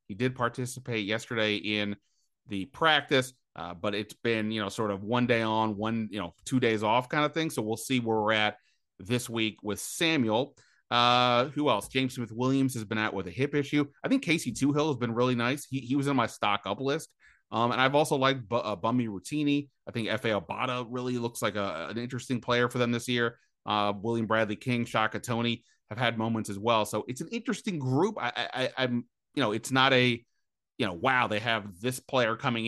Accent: American